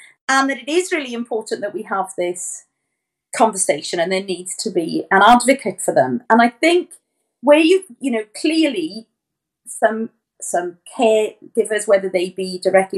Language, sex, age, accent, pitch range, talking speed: English, female, 40-59, British, 180-245 Hz, 160 wpm